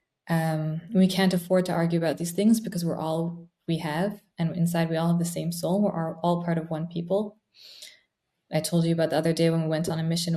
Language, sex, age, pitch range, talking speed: English, female, 20-39, 170-200 Hz, 245 wpm